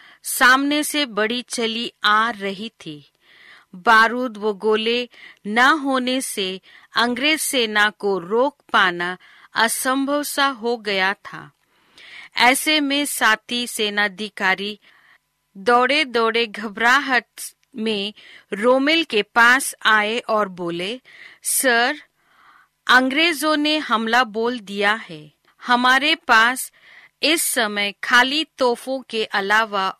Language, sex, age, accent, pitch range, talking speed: Hindi, female, 40-59, native, 210-265 Hz, 105 wpm